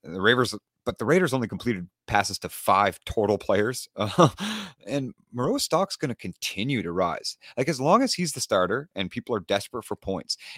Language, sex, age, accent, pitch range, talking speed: English, male, 30-49, American, 105-155 Hz, 185 wpm